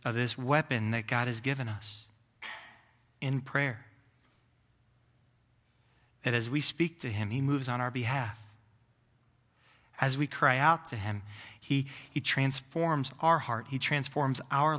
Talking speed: 140 wpm